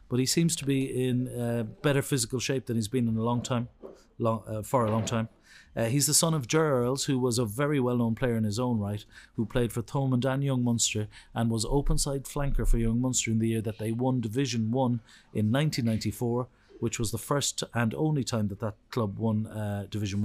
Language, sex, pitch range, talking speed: English, male, 110-130 Hz, 230 wpm